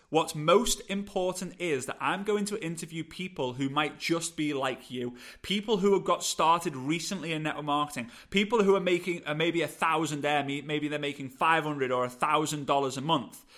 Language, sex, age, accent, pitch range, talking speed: English, male, 30-49, British, 135-180 Hz, 175 wpm